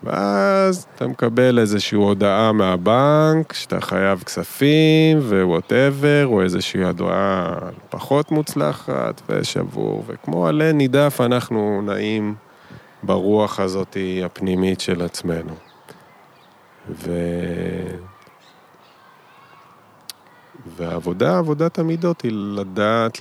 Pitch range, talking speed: 90-125 Hz, 80 wpm